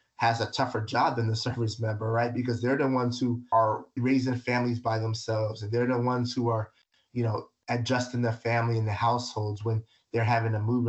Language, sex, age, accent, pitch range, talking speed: English, male, 30-49, American, 115-130 Hz, 210 wpm